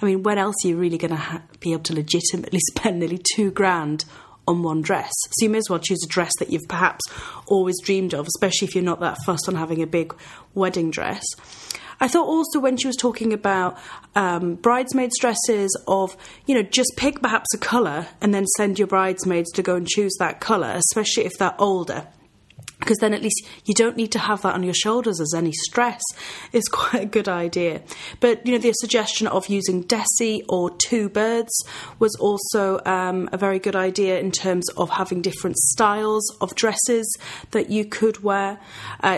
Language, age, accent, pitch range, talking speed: English, 30-49, British, 180-235 Hz, 200 wpm